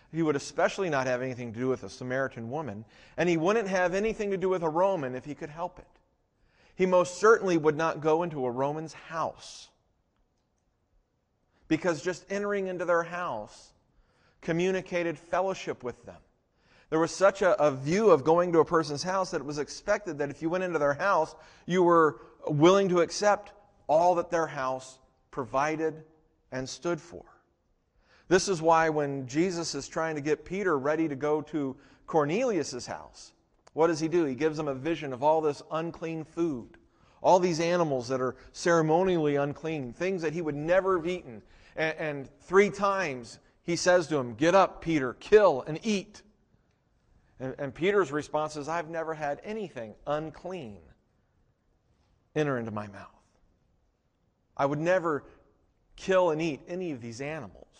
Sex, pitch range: male, 140-180 Hz